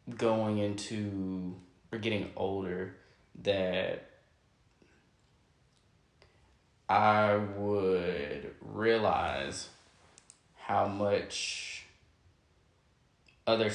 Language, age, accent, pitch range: English, 20-39, American, 90-105 Hz